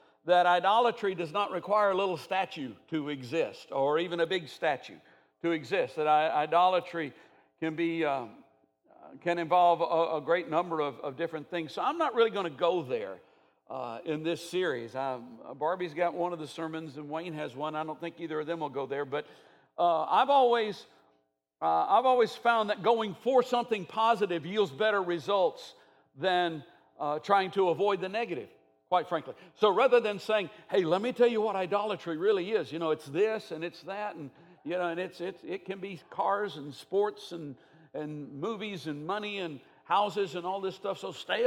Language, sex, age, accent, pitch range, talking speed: English, male, 50-69, American, 160-210 Hz, 195 wpm